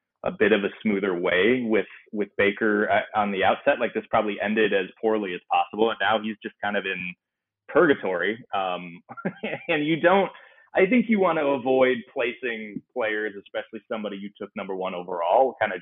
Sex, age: male, 20-39